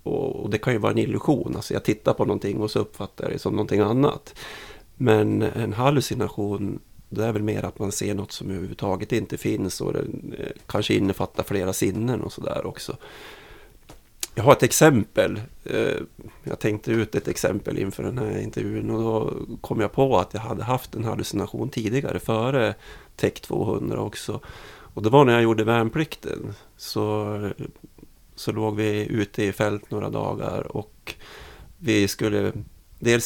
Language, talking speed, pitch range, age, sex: Swedish, 165 wpm, 105-115 Hz, 30-49, male